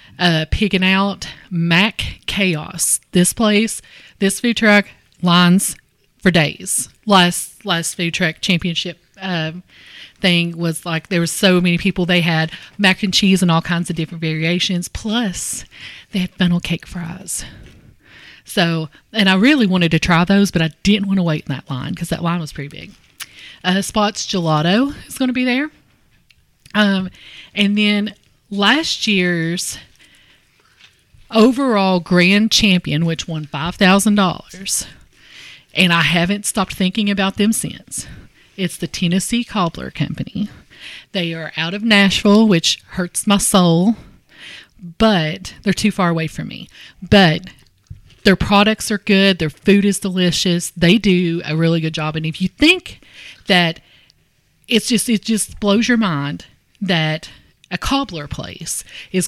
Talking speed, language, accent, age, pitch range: 150 wpm, English, American, 30-49, 170-200 Hz